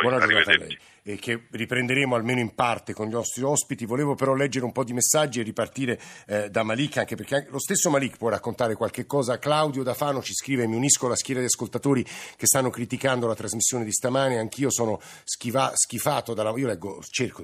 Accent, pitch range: native, 110-135 Hz